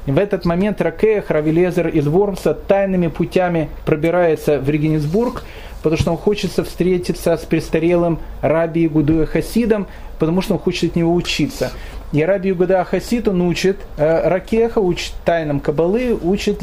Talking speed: 145 wpm